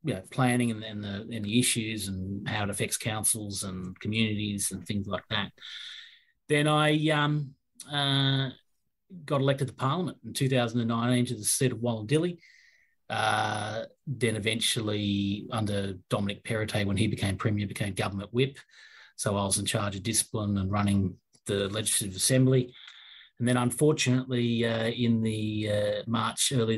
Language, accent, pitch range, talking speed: English, Australian, 110-135 Hz, 160 wpm